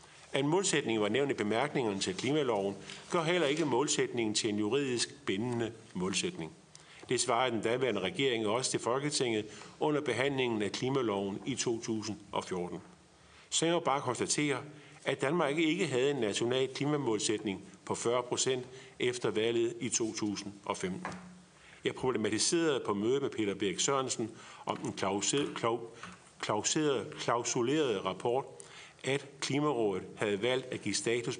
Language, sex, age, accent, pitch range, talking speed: Danish, male, 50-69, native, 110-155 Hz, 140 wpm